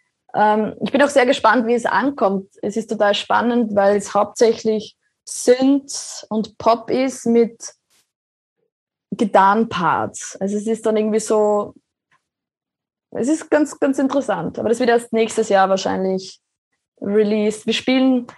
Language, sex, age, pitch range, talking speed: German, female, 20-39, 200-235 Hz, 135 wpm